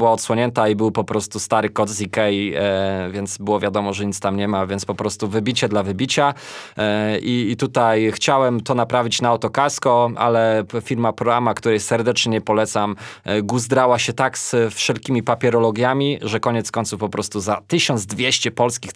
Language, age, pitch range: Polish, 20-39, 110-130 Hz